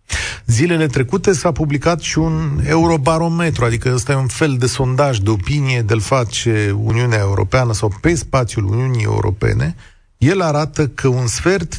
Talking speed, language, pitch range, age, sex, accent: 155 wpm, Romanian, 110-150 Hz, 40-59, male, native